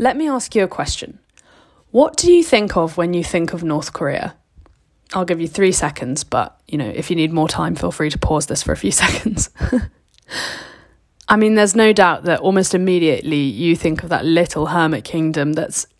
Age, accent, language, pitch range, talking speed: 20-39, British, English, 160-195 Hz, 205 wpm